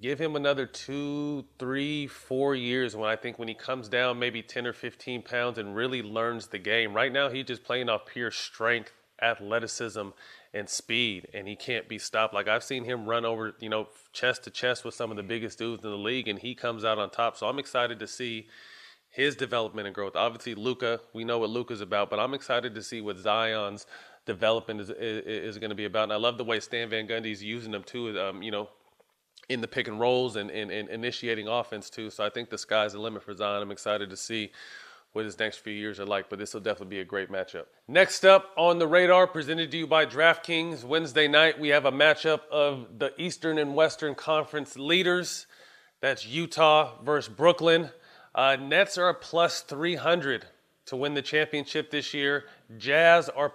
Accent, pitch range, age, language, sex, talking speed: American, 110-145 Hz, 30-49, English, male, 215 wpm